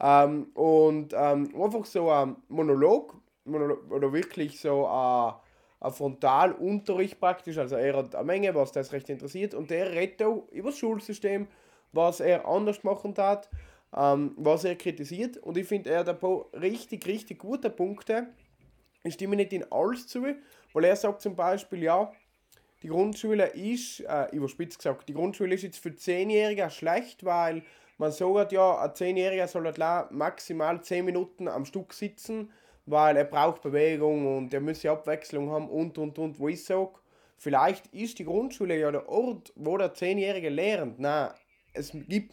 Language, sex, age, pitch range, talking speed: German, male, 20-39, 145-195 Hz, 170 wpm